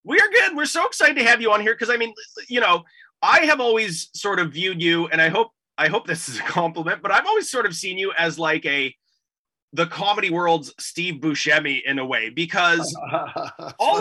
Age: 30-49